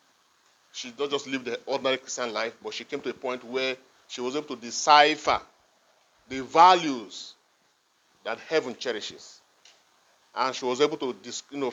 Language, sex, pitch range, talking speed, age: English, male, 130-185 Hz, 165 wpm, 30-49